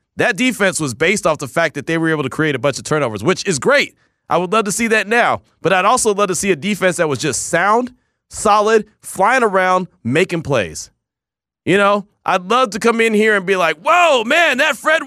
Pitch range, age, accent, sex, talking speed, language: 150-205 Hz, 30-49, American, male, 235 wpm, English